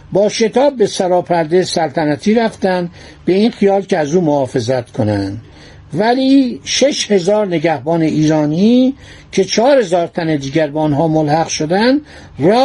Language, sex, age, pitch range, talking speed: Persian, male, 60-79, 155-210 Hz, 135 wpm